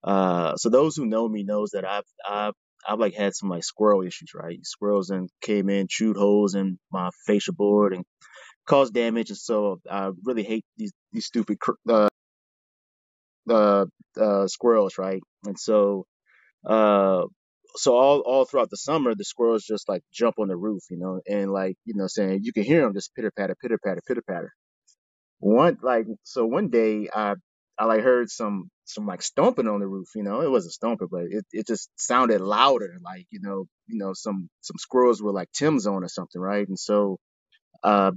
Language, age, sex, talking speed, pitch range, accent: English, 30-49, male, 195 wpm, 95-115 Hz, American